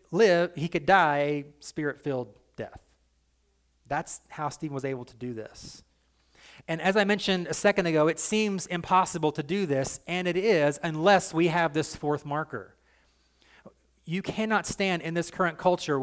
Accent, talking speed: American, 160 wpm